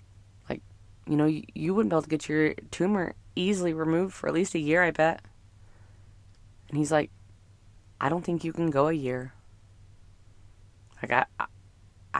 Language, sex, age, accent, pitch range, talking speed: English, female, 20-39, American, 100-150 Hz, 150 wpm